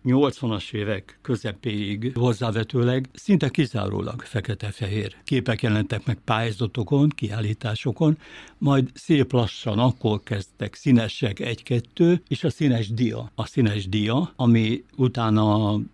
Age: 60-79